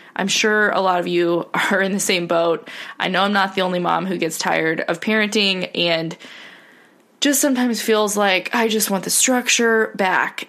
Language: English